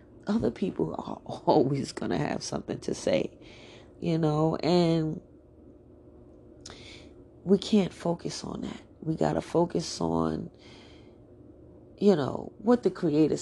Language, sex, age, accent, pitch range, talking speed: English, female, 30-49, American, 145-195 Hz, 125 wpm